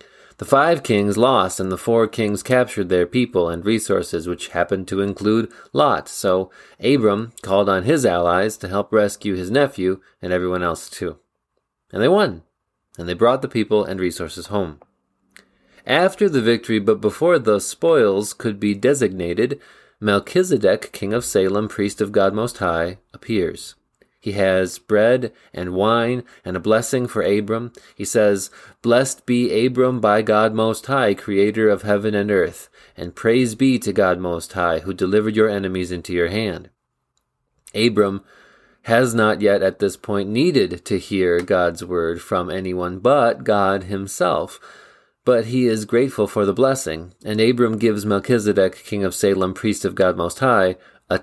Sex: male